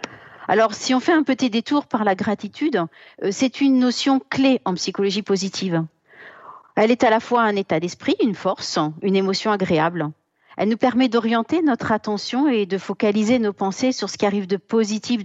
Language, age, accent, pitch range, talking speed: French, 50-69, French, 195-235 Hz, 185 wpm